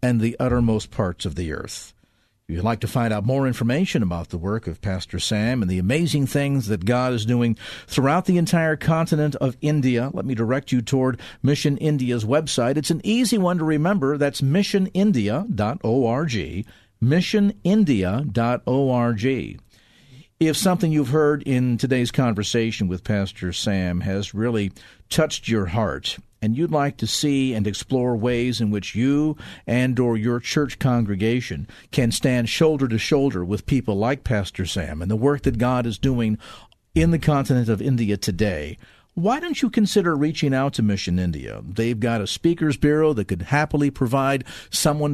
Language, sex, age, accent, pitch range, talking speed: English, male, 50-69, American, 110-150 Hz, 165 wpm